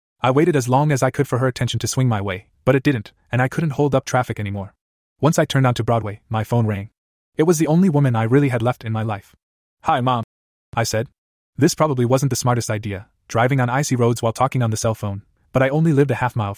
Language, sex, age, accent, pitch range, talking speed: English, male, 20-39, American, 115-150 Hz, 255 wpm